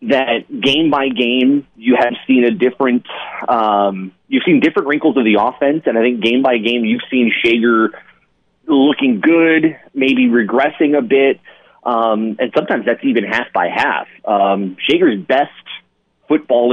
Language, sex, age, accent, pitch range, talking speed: English, male, 30-49, American, 110-150 Hz, 160 wpm